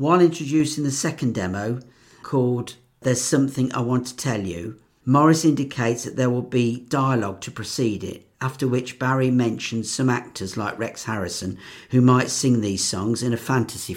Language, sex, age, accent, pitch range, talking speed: English, male, 50-69, British, 110-130 Hz, 170 wpm